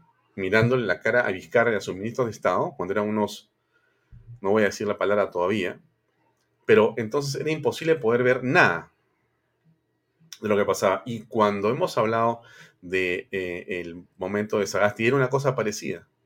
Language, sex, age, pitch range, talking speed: Spanish, male, 40-59, 105-155 Hz, 165 wpm